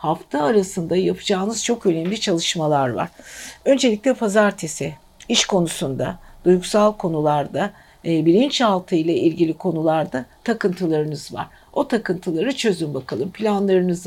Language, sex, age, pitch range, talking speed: Turkish, female, 60-79, 170-215 Hz, 100 wpm